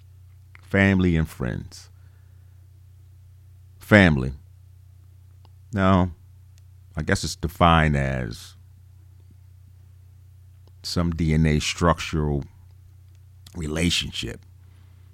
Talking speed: 55 wpm